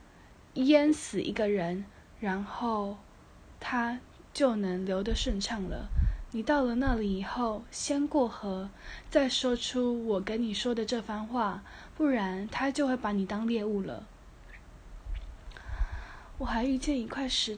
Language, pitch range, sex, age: Chinese, 210-260 Hz, female, 20-39